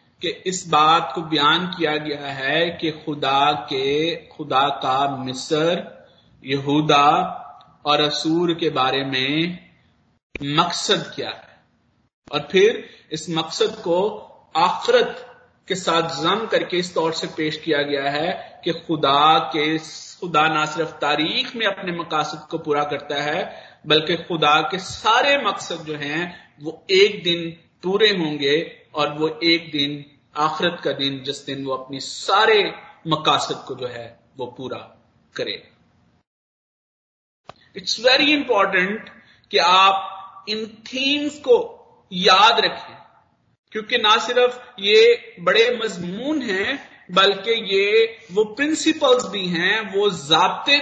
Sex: male